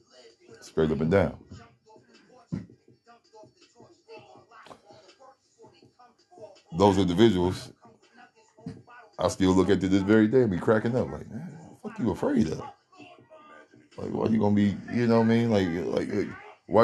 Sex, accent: male, American